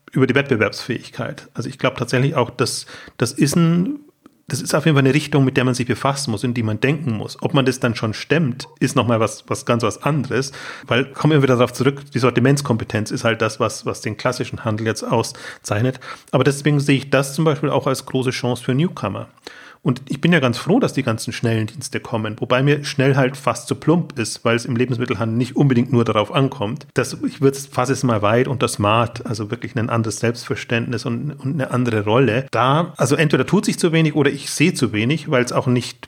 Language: German